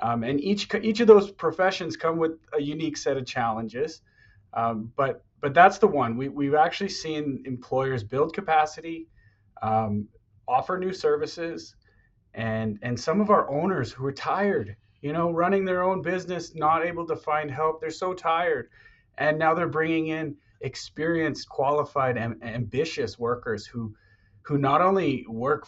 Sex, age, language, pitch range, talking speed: male, 30-49, English, 110-160 Hz, 165 wpm